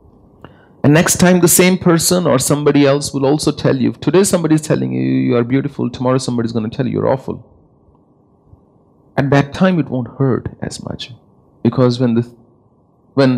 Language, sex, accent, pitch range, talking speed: English, male, Indian, 110-140 Hz, 195 wpm